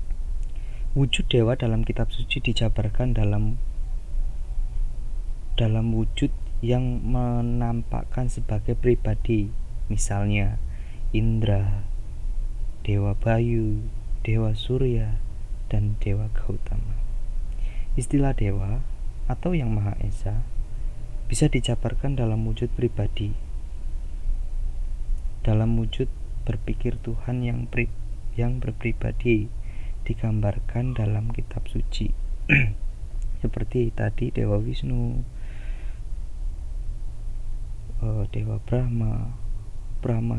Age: 20-39